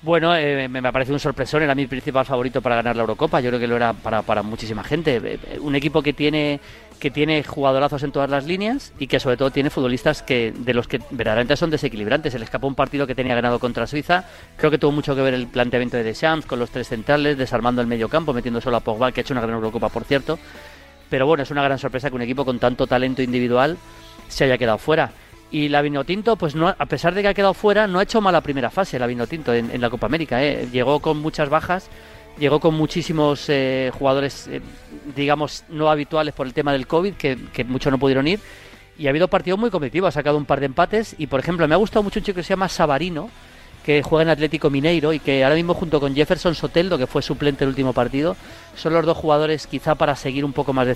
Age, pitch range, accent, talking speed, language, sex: 30-49, 125-155 Hz, Spanish, 245 wpm, Spanish, male